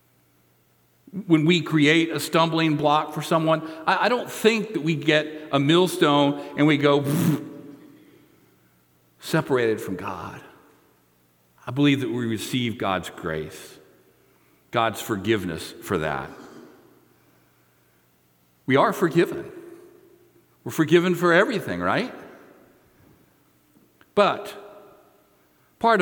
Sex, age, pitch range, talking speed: male, 50-69, 115-170 Hz, 100 wpm